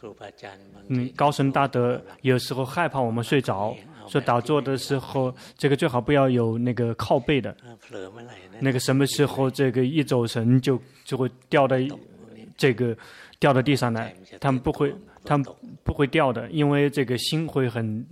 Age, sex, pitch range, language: 20-39, male, 125-145 Hz, Chinese